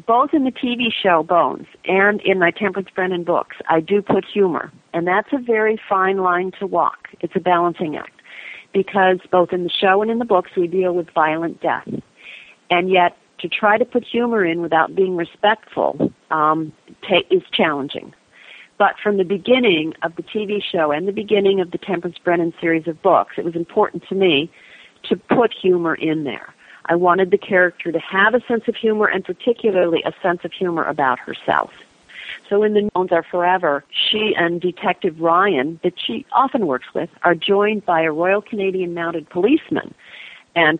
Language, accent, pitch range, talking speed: English, American, 160-200 Hz, 185 wpm